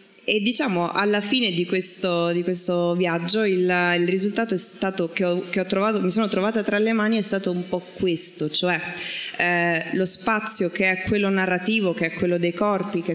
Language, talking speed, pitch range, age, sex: Italian, 200 wpm, 180-220 Hz, 20-39, female